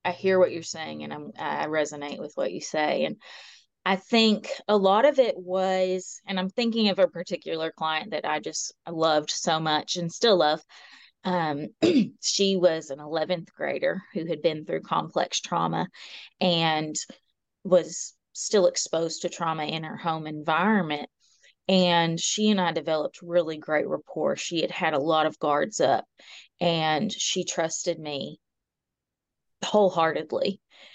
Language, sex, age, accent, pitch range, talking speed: English, female, 20-39, American, 155-190 Hz, 155 wpm